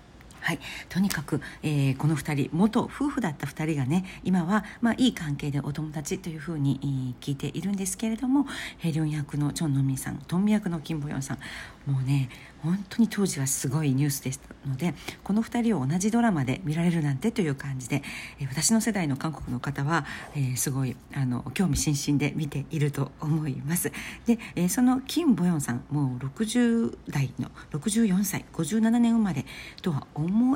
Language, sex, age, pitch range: Japanese, female, 50-69, 140-195 Hz